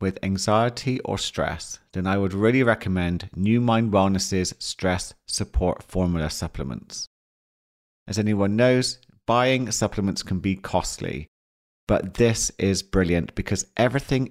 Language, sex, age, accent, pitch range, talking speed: English, male, 40-59, British, 95-120 Hz, 125 wpm